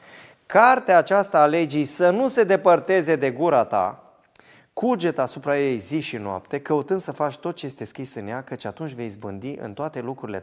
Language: Romanian